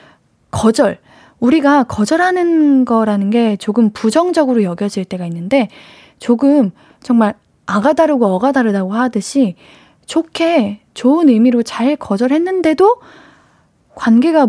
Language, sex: Korean, female